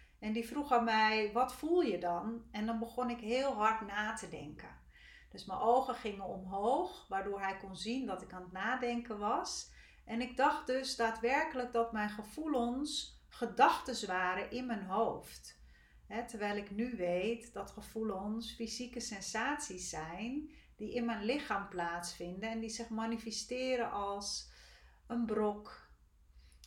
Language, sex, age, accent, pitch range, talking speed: Dutch, female, 40-59, Dutch, 200-235 Hz, 150 wpm